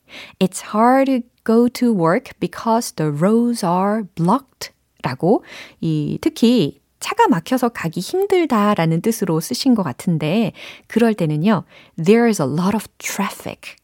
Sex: female